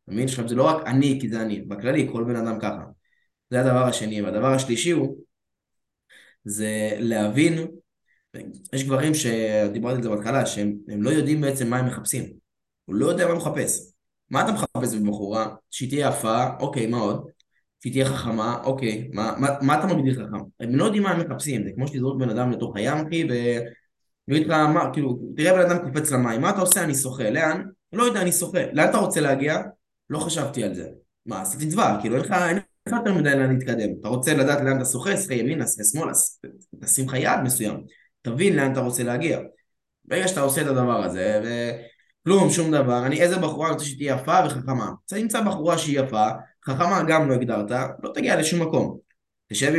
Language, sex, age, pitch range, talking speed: Hebrew, male, 20-39, 110-155 Hz, 100 wpm